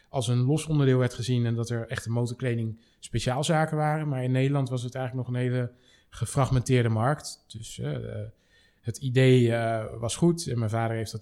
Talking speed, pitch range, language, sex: 195 wpm, 115-140 Hz, Dutch, male